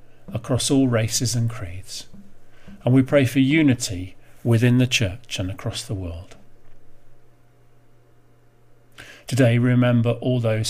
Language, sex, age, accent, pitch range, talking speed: English, male, 40-59, British, 110-120 Hz, 120 wpm